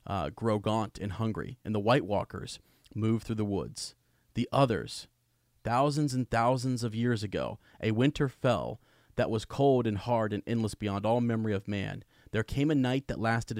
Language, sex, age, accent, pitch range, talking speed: English, male, 30-49, American, 105-130 Hz, 185 wpm